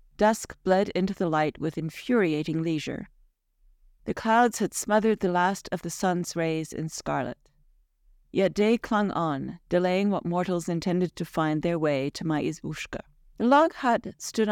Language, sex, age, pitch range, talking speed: English, female, 40-59, 155-200 Hz, 160 wpm